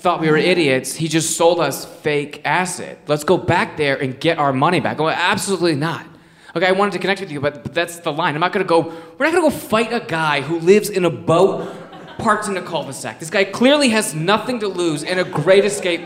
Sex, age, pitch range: male, 20-39, 135-185 Hz